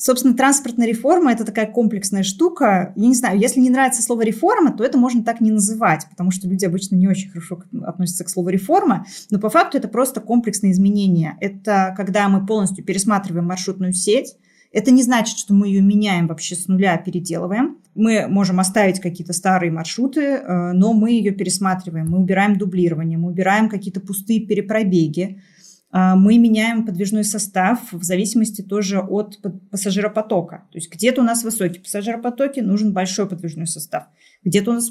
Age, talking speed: 20-39, 170 wpm